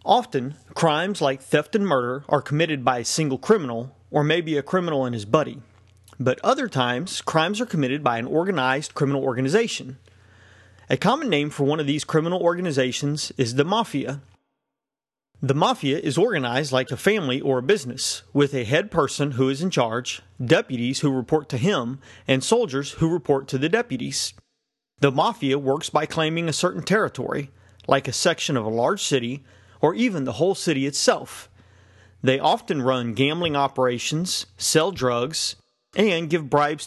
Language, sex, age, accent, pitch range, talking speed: English, male, 30-49, American, 130-165 Hz, 170 wpm